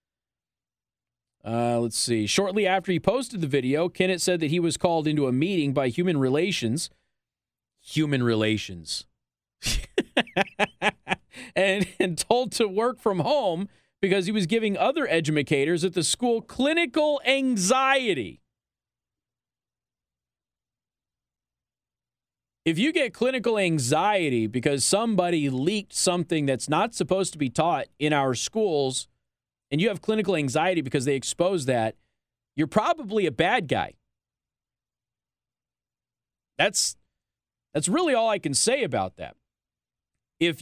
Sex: male